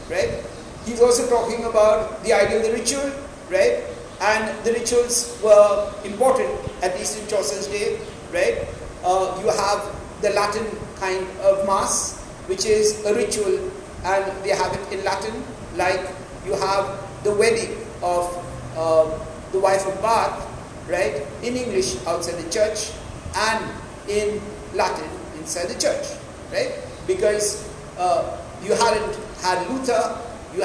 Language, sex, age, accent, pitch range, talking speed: English, male, 50-69, Indian, 195-245 Hz, 140 wpm